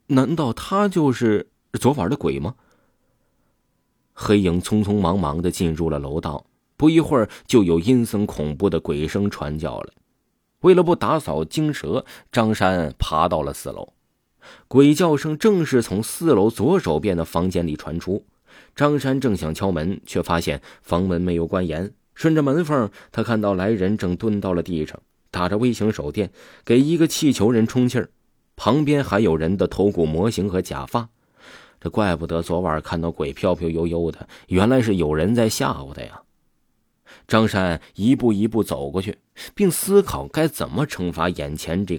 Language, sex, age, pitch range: Chinese, male, 30-49, 85-125 Hz